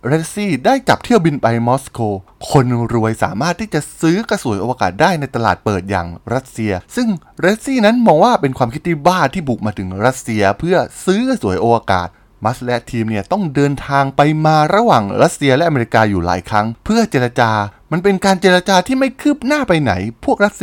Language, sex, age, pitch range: Thai, male, 20-39, 110-180 Hz